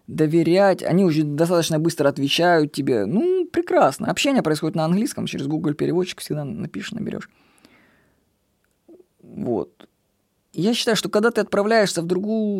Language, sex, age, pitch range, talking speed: Russian, female, 20-39, 160-210 Hz, 135 wpm